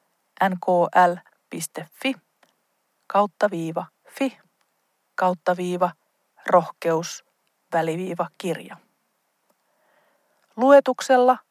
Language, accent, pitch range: Finnish, native, 175-245 Hz